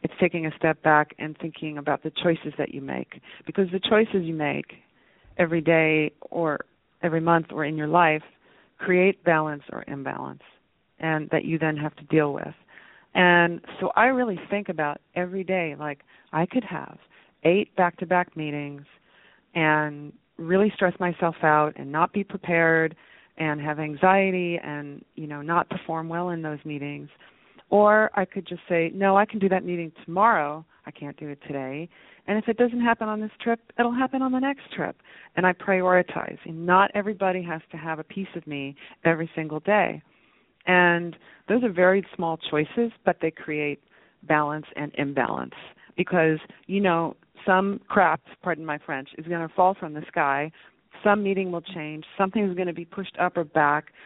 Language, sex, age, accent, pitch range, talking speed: English, female, 40-59, American, 155-190 Hz, 180 wpm